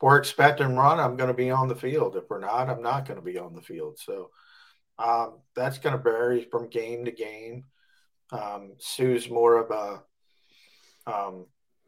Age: 50-69